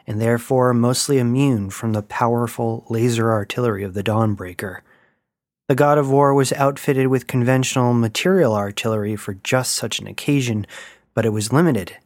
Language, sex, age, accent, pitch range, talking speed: English, male, 30-49, American, 110-135 Hz, 155 wpm